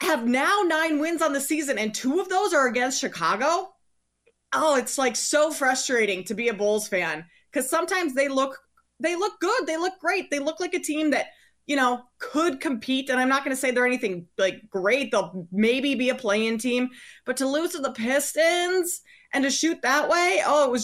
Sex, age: female, 20-39